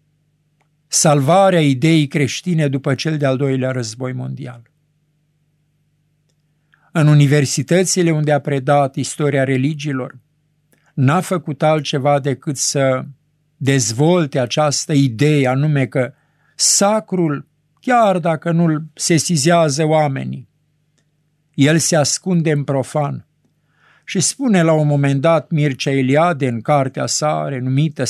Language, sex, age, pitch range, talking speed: Romanian, male, 50-69, 145-175 Hz, 105 wpm